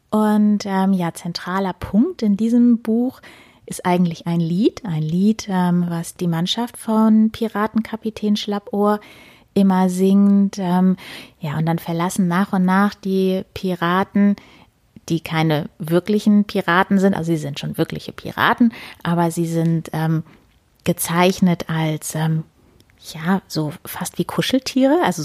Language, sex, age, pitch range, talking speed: German, female, 30-49, 175-220 Hz, 135 wpm